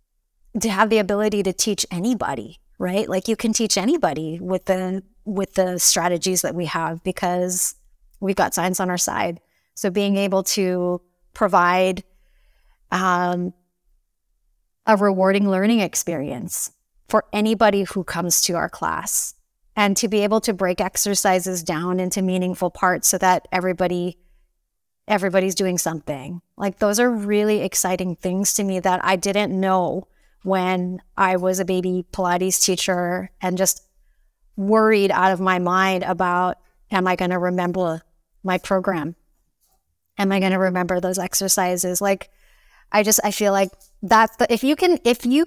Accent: American